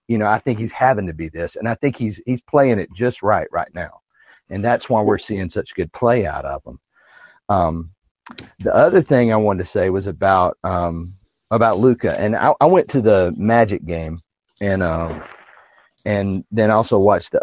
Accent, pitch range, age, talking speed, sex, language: American, 95-115 Hz, 40-59, 205 wpm, male, English